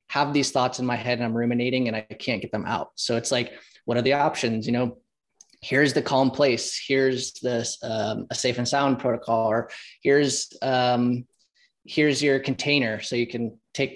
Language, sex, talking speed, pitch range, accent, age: English, male, 195 wpm, 120-140 Hz, American, 20-39